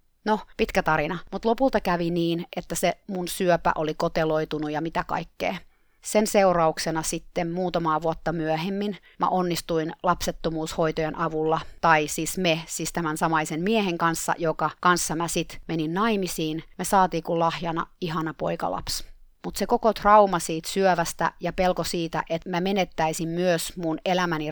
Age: 30-49